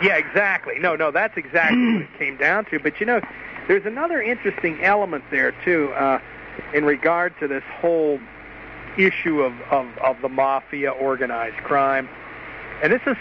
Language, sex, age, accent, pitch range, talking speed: English, male, 50-69, American, 135-170 Hz, 170 wpm